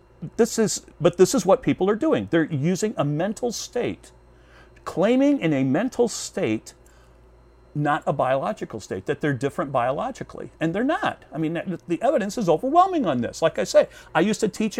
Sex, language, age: male, English, 50-69